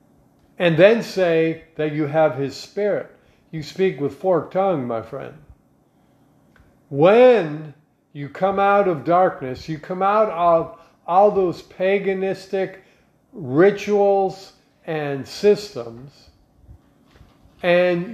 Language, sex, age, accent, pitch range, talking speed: English, male, 50-69, American, 155-200 Hz, 105 wpm